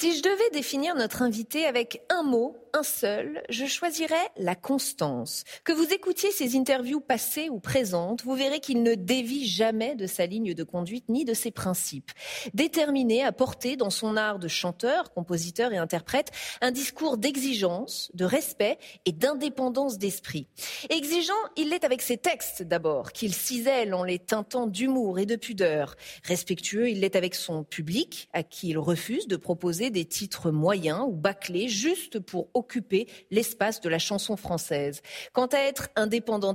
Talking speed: 165 wpm